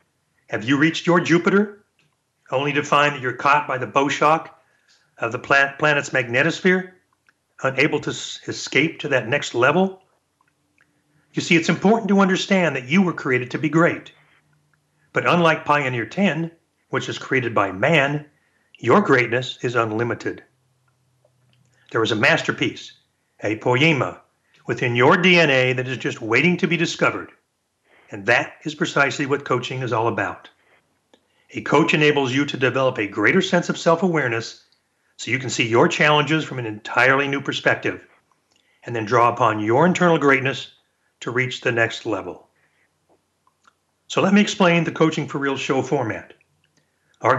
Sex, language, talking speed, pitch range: male, English, 155 wpm, 130-165 Hz